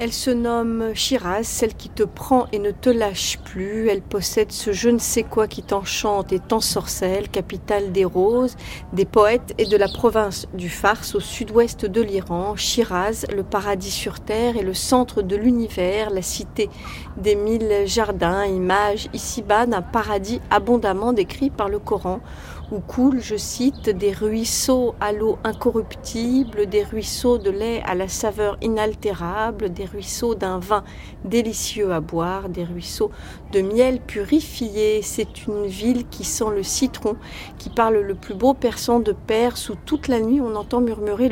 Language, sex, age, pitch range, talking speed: French, female, 40-59, 200-235 Hz, 160 wpm